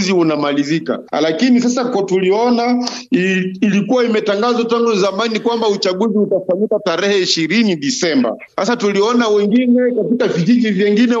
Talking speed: 120 wpm